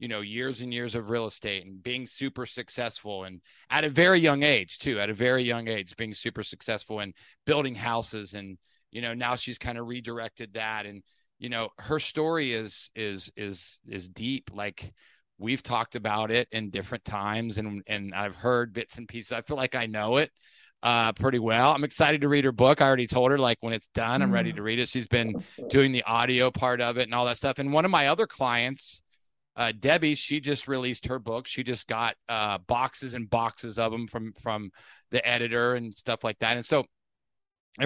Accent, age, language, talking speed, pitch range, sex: American, 30-49, English, 215 wpm, 105-130 Hz, male